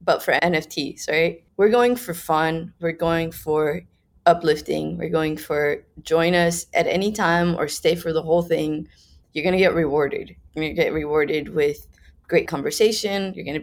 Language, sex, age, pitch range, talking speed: English, female, 20-39, 155-180 Hz, 170 wpm